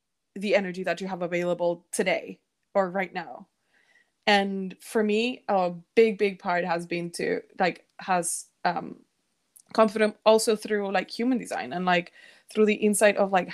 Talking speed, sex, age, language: 160 wpm, female, 20-39, English